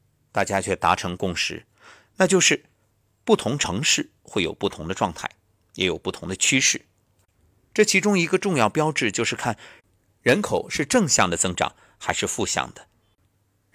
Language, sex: Chinese, male